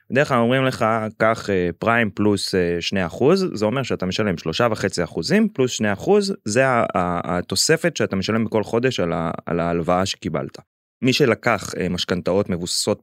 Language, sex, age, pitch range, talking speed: Hebrew, male, 20-39, 90-120 Hz, 140 wpm